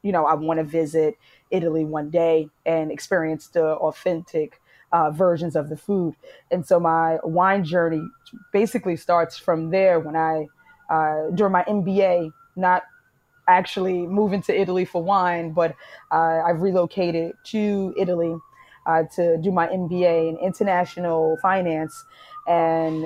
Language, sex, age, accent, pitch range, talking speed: English, female, 20-39, American, 170-205 Hz, 145 wpm